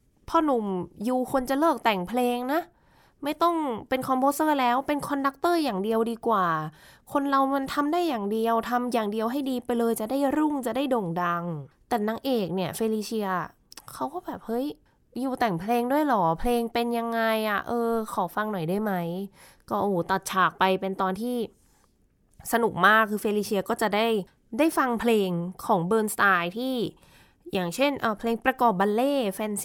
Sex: female